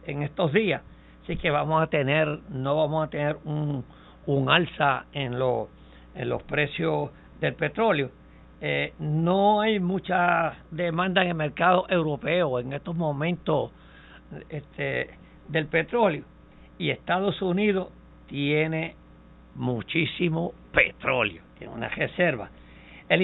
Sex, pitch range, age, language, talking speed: male, 135-185 Hz, 60-79, Spanish, 120 wpm